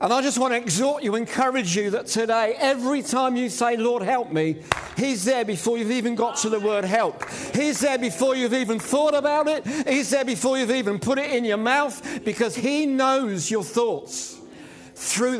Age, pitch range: 50-69, 210-265 Hz